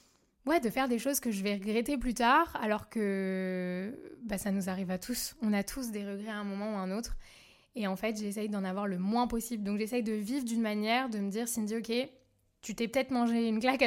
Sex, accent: female, French